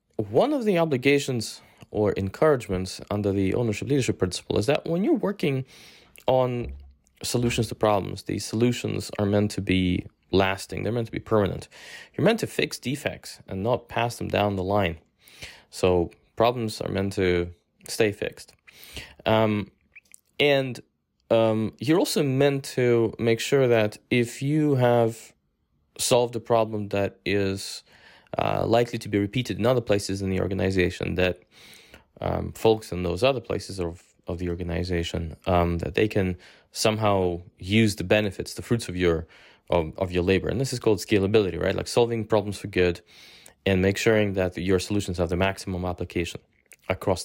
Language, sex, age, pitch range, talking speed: English, male, 20-39, 95-120 Hz, 165 wpm